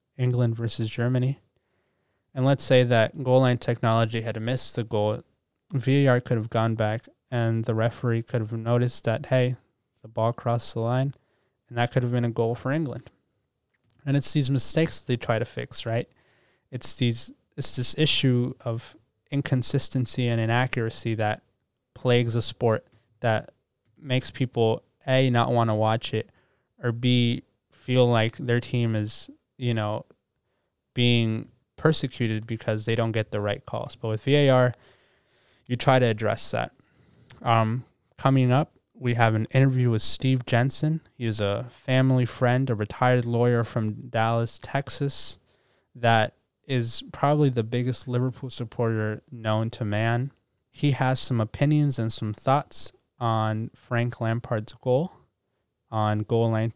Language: English